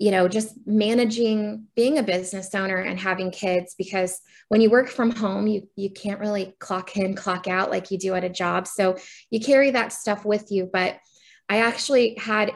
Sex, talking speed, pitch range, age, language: female, 200 wpm, 185-220 Hz, 20-39, English